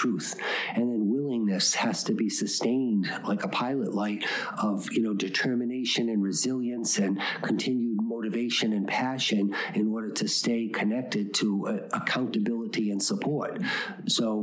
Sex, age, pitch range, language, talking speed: male, 50-69, 105-125 Hz, English, 140 wpm